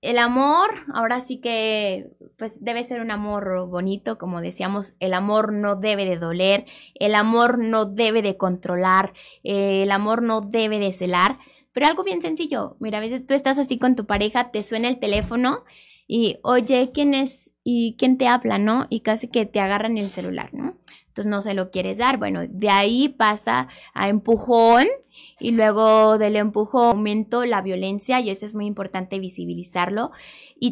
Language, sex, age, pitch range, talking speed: Spanish, female, 20-39, 200-245 Hz, 180 wpm